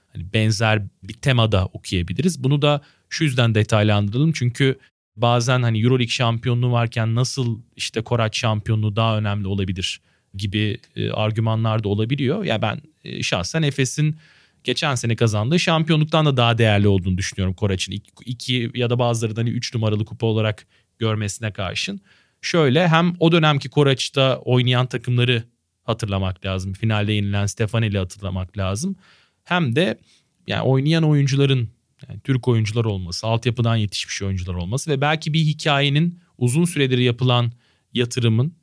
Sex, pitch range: male, 105-140 Hz